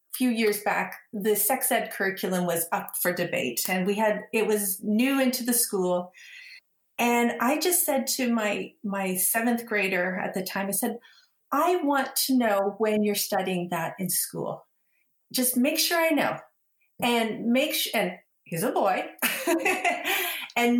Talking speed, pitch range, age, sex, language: 165 wpm, 210-270 Hz, 40-59, female, English